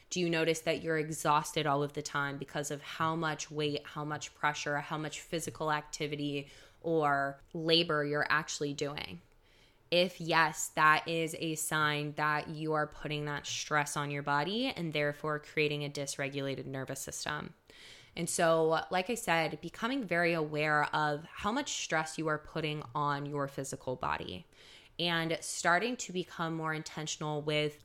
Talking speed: 160 wpm